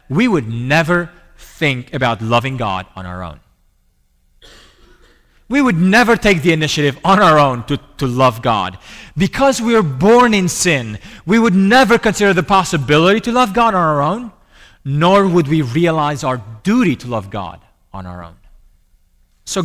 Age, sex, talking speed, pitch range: 30-49, male, 165 wpm, 115-195 Hz